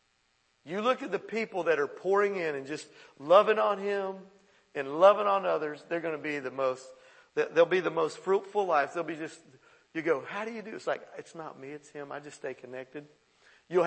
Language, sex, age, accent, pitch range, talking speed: English, male, 50-69, American, 135-195 Hz, 220 wpm